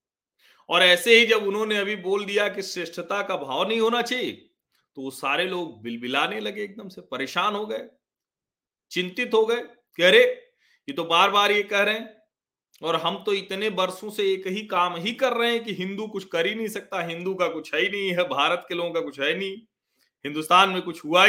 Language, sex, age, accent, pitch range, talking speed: Hindi, male, 40-59, native, 155-215 Hz, 215 wpm